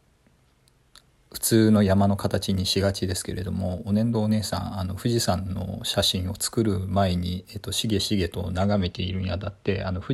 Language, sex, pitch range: Japanese, male, 95-105 Hz